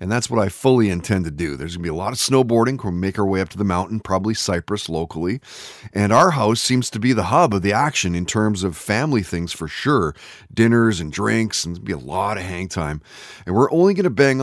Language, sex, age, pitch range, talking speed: English, male, 30-49, 95-125 Hz, 260 wpm